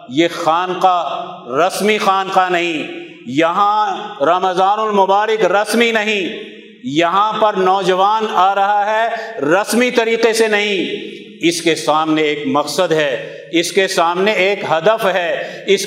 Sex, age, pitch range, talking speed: male, 50-69, 180-220 Hz, 125 wpm